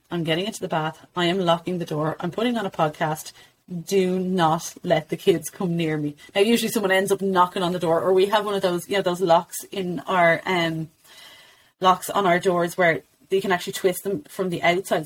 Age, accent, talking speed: 30-49, Irish, 230 wpm